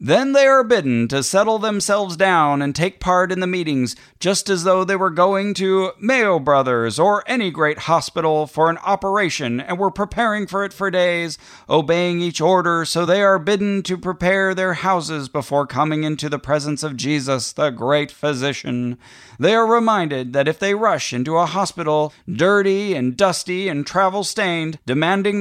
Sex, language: male, English